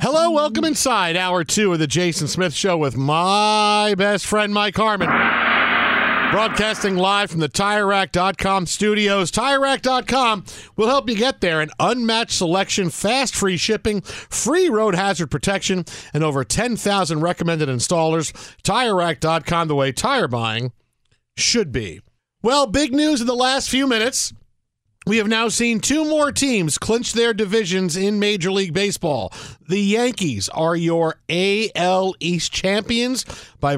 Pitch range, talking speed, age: 150-210 Hz, 140 wpm, 50-69